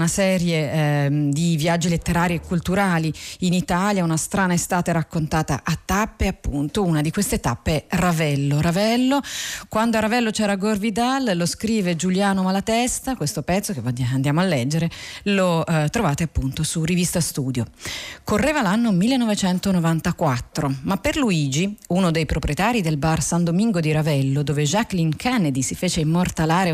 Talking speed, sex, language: 150 wpm, female, Italian